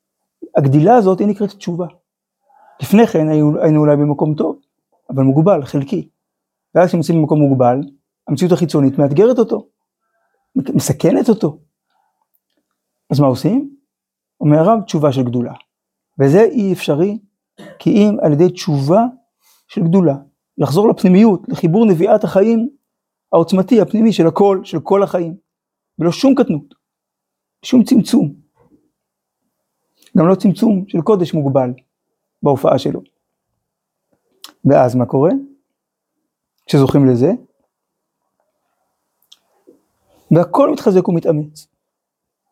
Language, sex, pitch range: Hebrew, male, 150-210 Hz